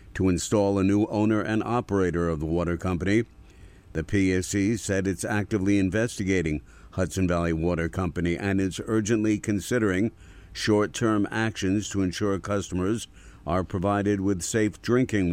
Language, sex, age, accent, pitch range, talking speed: English, male, 60-79, American, 90-105 Hz, 135 wpm